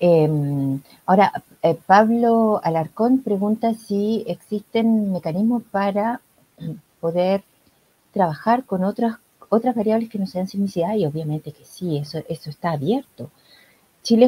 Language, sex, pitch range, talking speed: Spanish, female, 160-215 Hz, 120 wpm